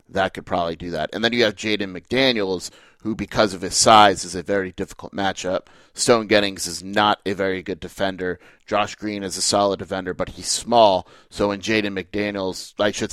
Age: 30-49